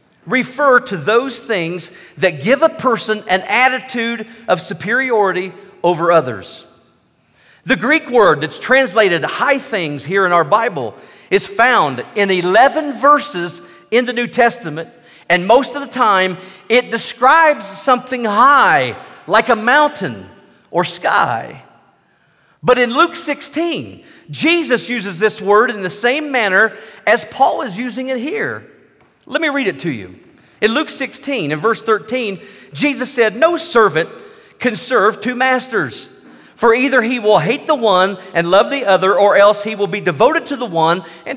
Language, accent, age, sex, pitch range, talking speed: English, American, 40-59, male, 195-265 Hz, 155 wpm